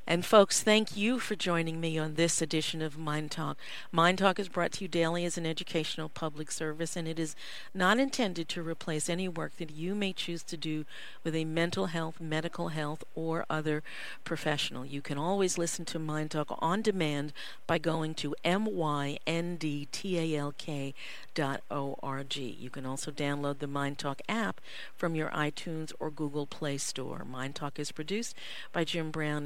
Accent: American